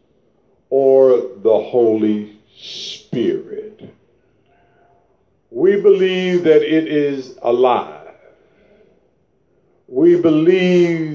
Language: English